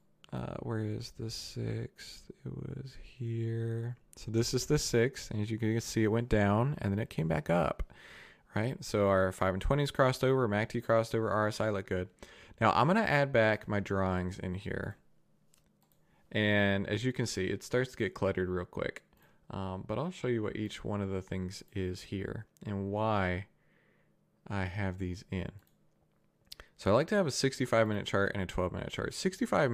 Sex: male